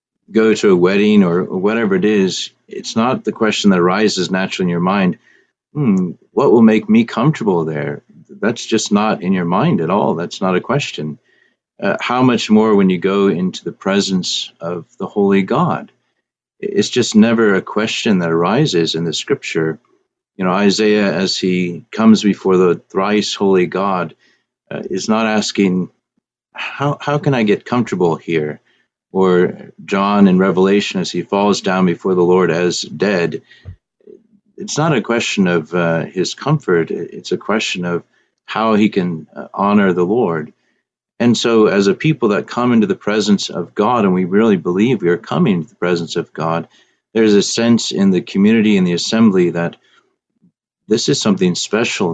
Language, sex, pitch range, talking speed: English, male, 90-110 Hz, 175 wpm